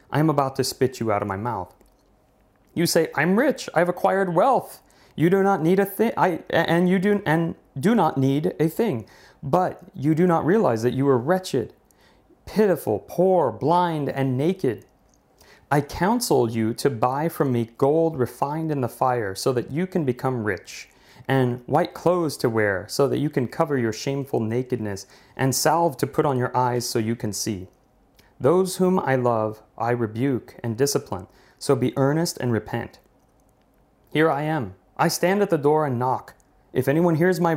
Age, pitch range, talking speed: 30-49, 120-160 Hz, 185 wpm